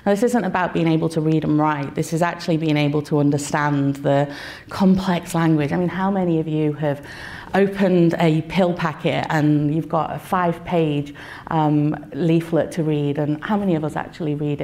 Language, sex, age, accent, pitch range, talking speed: English, female, 30-49, British, 150-180 Hz, 195 wpm